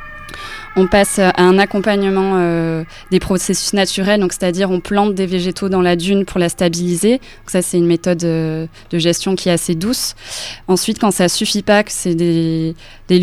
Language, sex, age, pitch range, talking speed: French, female, 20-39, 170-195 Hz, 185 wpm